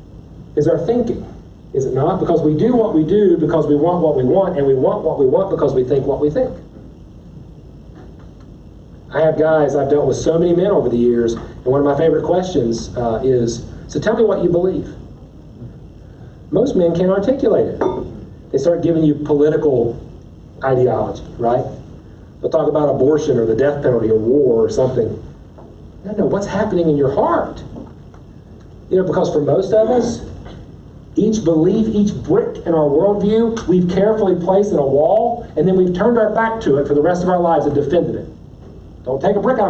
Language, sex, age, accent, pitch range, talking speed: English, male, 40-59, American, 145-200 Hz, 195 wpm